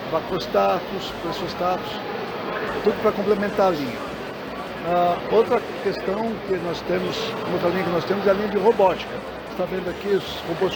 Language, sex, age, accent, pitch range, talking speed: Portuguese, male, 60-79, Brazilian, 180-215 Hz, 155 wpm